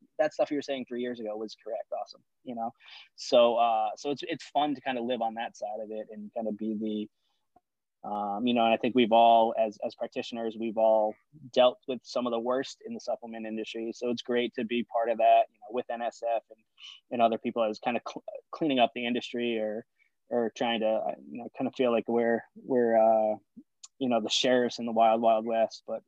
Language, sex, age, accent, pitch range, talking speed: English, male, 20-39, American, 110-125 Hz, 235 wpm